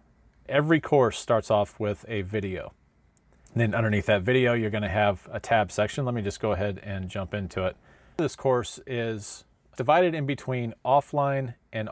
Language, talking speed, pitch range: English, 170 wpm, 100-125 Hz